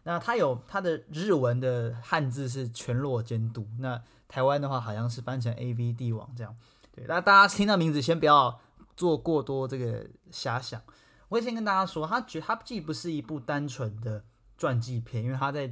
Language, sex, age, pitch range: Chinese, male, 20-39, 115-150 Hz